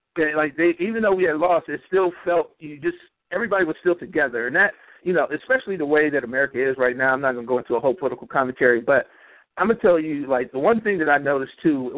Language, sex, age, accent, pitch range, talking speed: English, male, 50-69, American, 135-165 Hz, 275 wpm